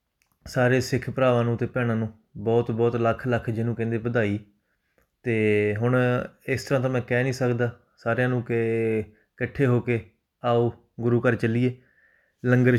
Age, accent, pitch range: 20-39, Indian, 110-125 Hz